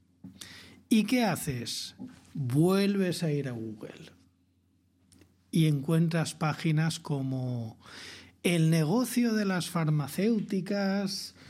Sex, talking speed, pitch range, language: male, 90 wpm, 130-175 Hz, Spanish